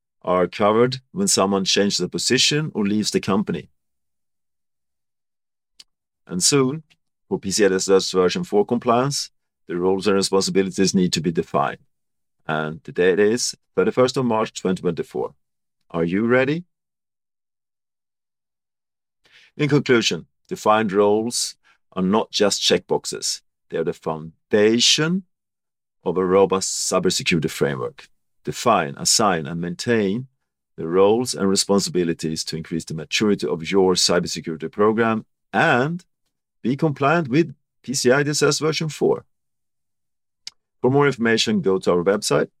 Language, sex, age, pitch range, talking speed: English, male, 40-59, 95-135 Hz, 120 wpm